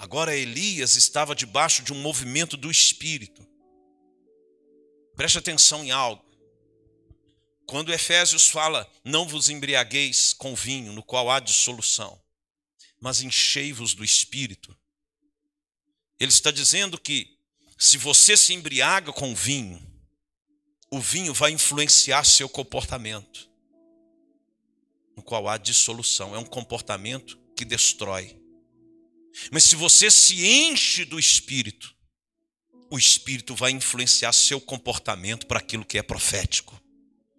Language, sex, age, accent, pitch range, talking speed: Portuguese, male, 50-69, Brazilian, 125-205 Hz, 115 wpm